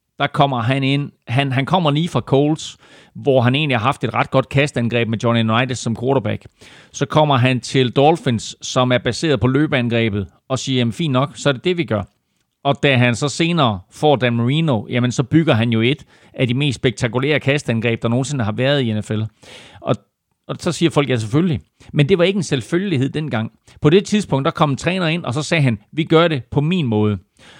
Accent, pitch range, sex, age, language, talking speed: native, 120-150 Hz, male, 40-59, Danish, 220 wpm